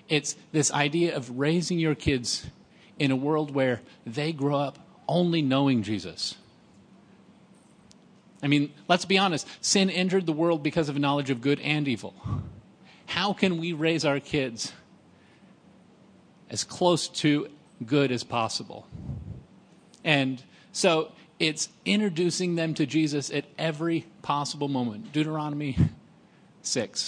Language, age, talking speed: English, 40-59, 130 wpm